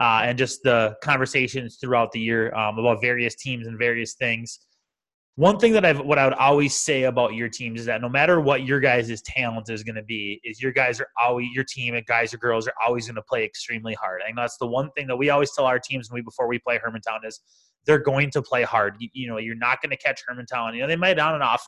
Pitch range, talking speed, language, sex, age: 115-145 Hz, 270 wpm, English, male, 20-39